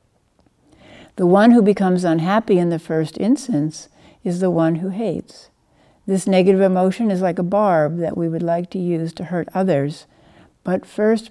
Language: English